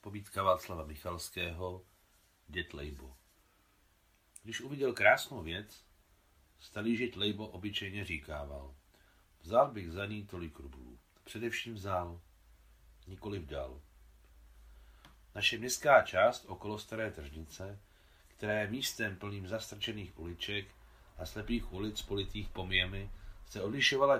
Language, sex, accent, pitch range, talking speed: Czech, male, native, 80-105 Hz, 105 wpm